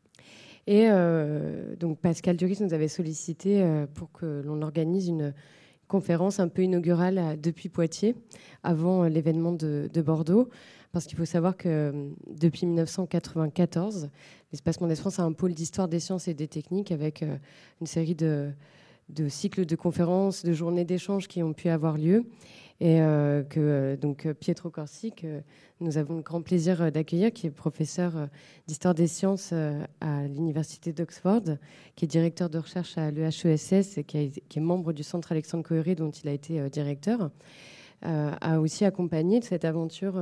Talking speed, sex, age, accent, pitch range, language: 180 wpm, female, 20-39, French, 155-180 Hz, French